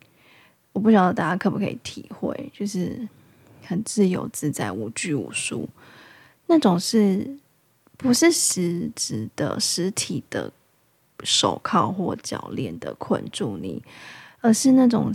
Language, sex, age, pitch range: Chinese, female, 20-39, 175-215 Hz